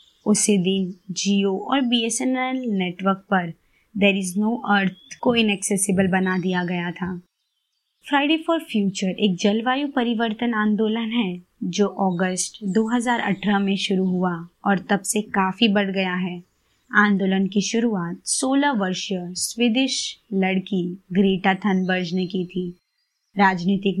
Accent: native